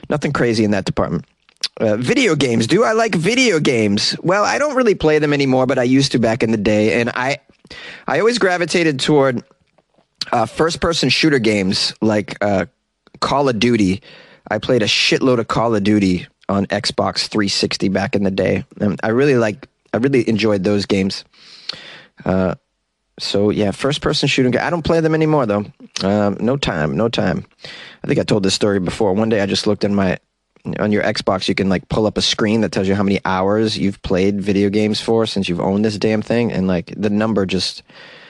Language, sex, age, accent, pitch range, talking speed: English, male, 20-39, American, 100-155 Hz, 205 wpm